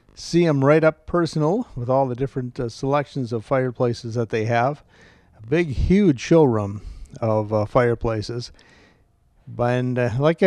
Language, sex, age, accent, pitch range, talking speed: English, male, 40-59, American, 110-145 Hz, 150 wpm